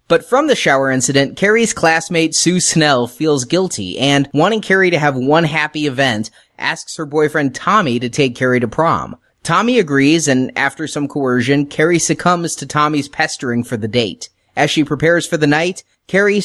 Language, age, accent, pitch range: English, 30-49, American, 130-170 Hz